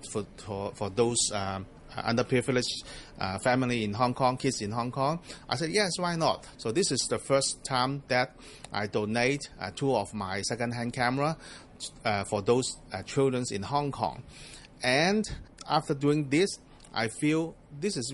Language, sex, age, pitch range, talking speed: English, male, 30-49, 110-135 Hz, 165 wpm